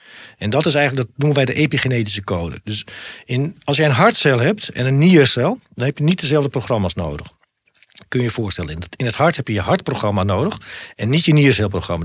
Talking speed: 230 wpm